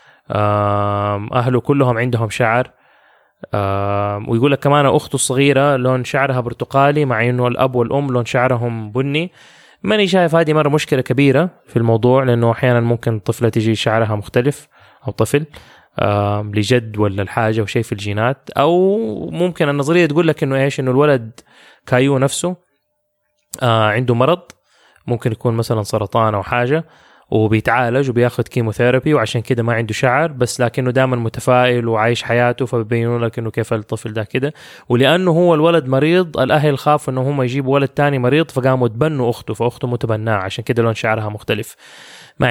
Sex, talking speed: male, 150 wpm